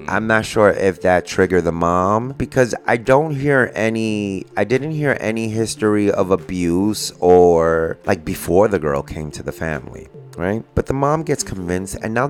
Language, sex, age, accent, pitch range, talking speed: English, male, 30-49, American, 90-115 Hz, 180 wpm